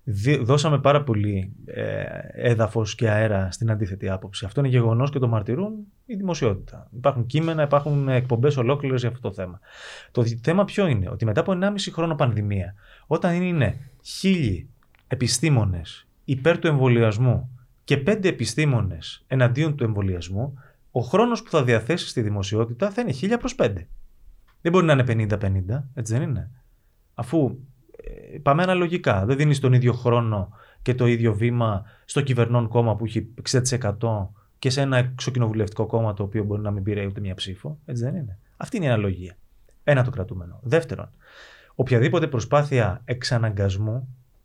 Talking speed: 160 wpm